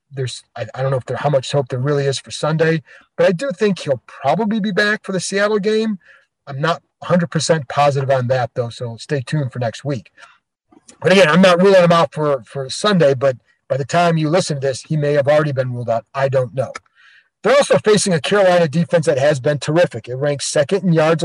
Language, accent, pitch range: English, American, 140-180 Hz